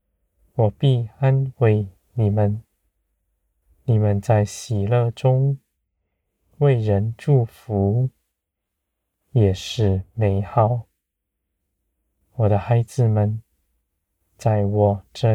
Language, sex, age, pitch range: Chinese, male, 20-39, 80-115 Hz